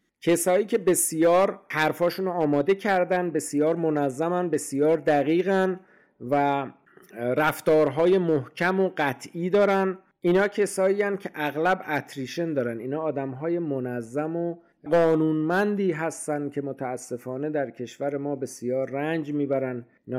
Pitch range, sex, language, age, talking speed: 140-180 Hz, male, Persian, 50-69, 110 wpm